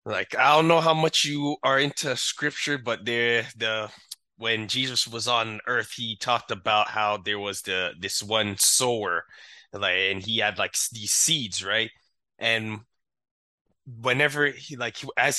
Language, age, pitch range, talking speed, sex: English, 20-39, 105-130 Hz, 160 wpm, male